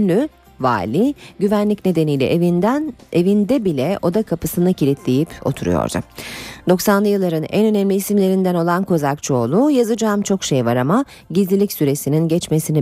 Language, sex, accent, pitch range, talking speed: Turkish, female, native, 155-225 Hz, 115 wpm